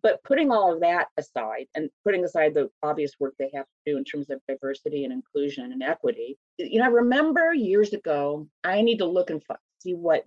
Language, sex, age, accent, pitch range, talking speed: English, female, 40-59, American, 150-230 Hz, 215 wpm